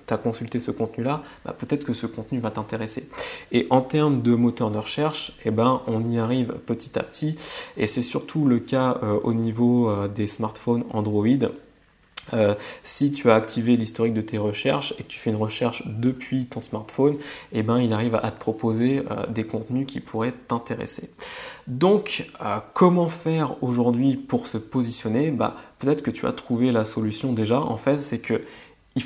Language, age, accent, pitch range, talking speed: French, 20-39, French, 115-140 Hz, 190 wpm